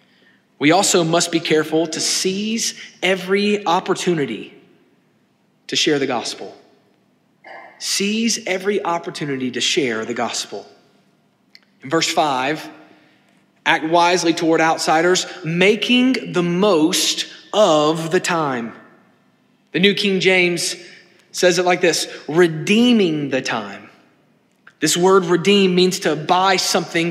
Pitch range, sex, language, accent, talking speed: 170-225 Hz, male, English, American, 115 wpm